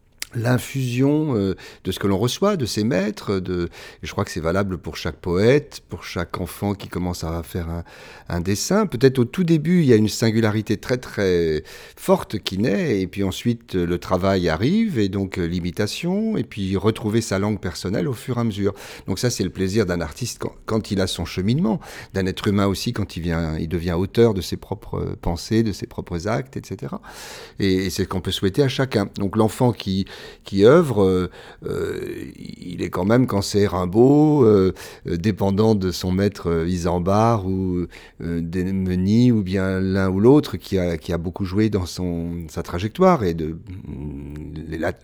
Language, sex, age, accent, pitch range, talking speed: French, male, 40-59, French, 90-115 Hz, 195 wpm